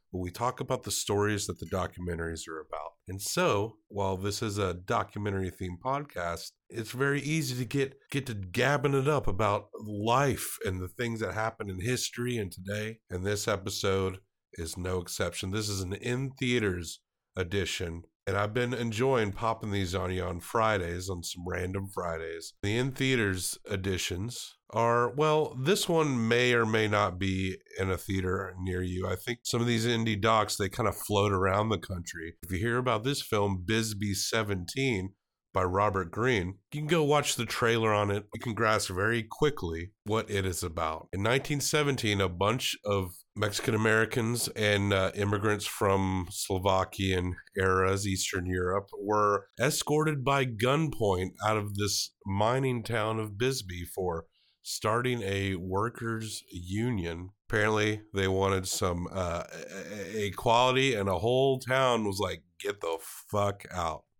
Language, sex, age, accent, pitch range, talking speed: English, male, 50-69, American, 95-120 Hz, 160 wpm